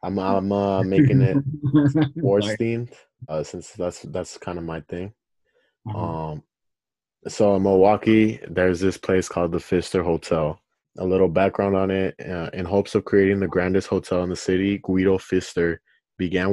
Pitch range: 90-100 Hz